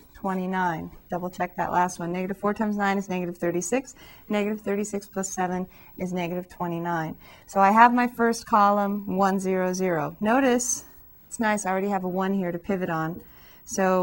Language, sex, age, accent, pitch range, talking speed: English, female, 30-49, American, 190-235 Hz, 180 wpm